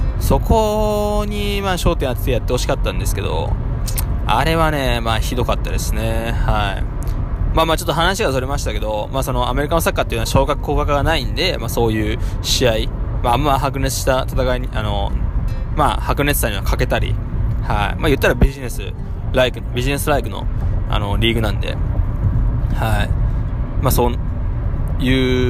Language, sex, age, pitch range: Japanese, male, 20-39, 105-125 Hz